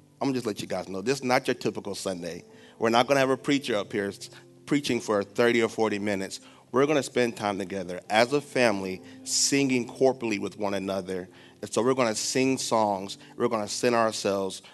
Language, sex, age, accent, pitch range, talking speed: English, male, 30-49, American, 95-115 Hz, 205 wpm